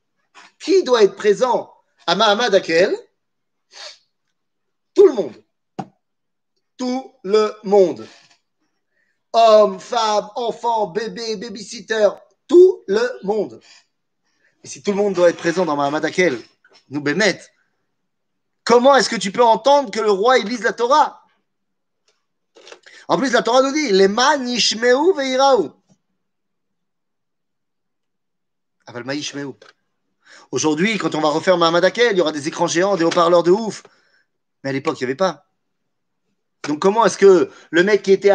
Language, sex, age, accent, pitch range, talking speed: French, male, 30-49, French, 165-235 Hz, 140 wpm